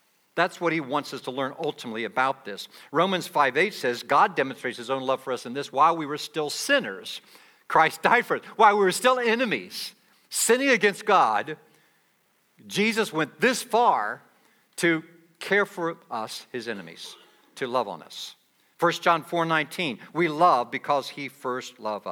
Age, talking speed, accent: 60-79, 170 wpm, American